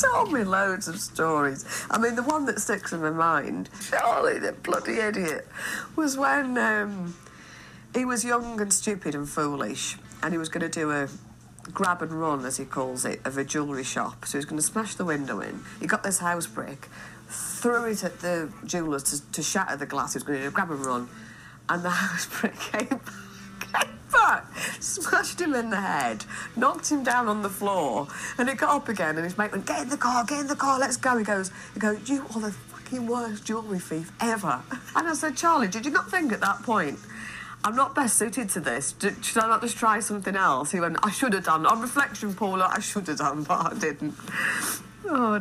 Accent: British